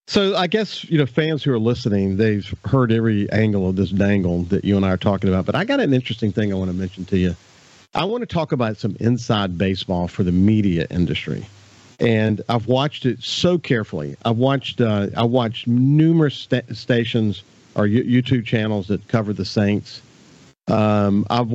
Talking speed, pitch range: 195 wpm, 105-130 Hz